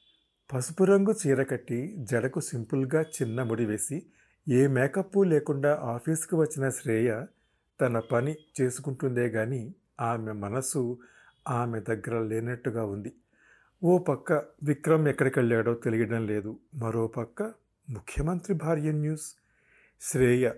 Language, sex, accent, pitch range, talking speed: Telugu, male, native, 120-160 Hz, 100 wpm